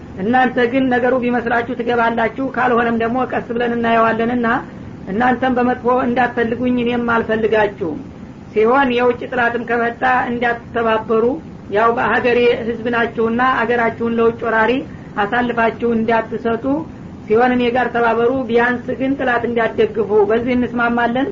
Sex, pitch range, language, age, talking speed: female, 230-250 Hz, Amharic, 50-69, 105 wpm